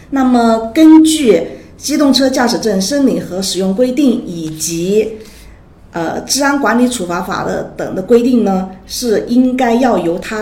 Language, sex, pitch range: Chinese, female, 180-250 Hz